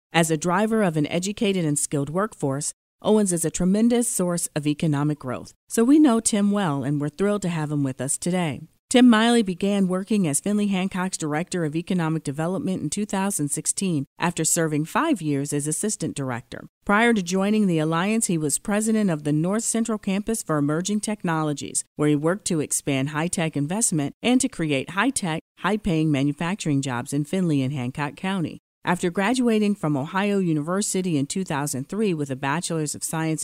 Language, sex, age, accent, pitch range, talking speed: English, female, 40-59, American, 150-200 Hz, 175 wpm